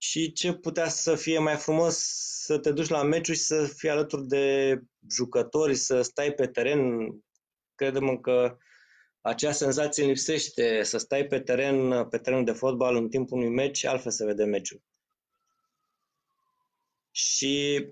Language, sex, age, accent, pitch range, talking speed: Romanian, male, 20-39, native, 125-155 Hz, 145 wpm